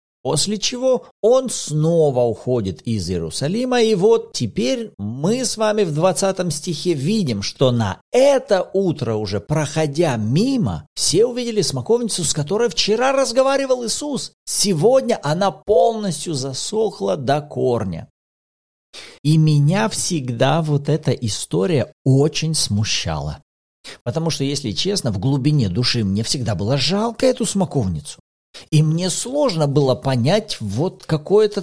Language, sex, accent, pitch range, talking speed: Russian, male, native, 135-220 Hz, 125 wpm